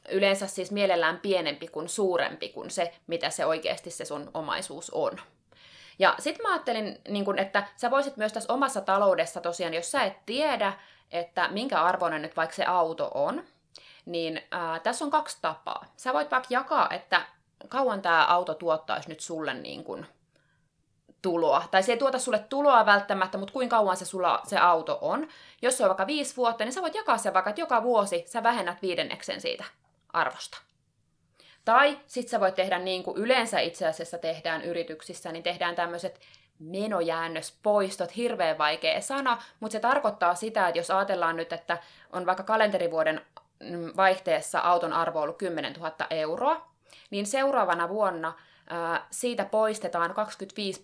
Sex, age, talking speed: female, 20-39, 160 wpm